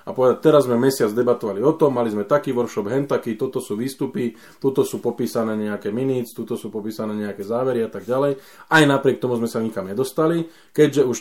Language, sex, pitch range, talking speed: Slovak, male, 110-135 Hz, 210 wpm